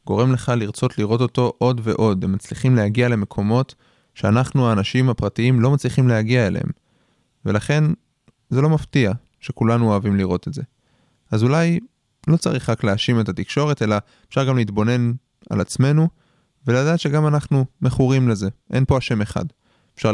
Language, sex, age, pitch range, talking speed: Hebrew, male, 20-39, 110-135 Hz, 150 wpm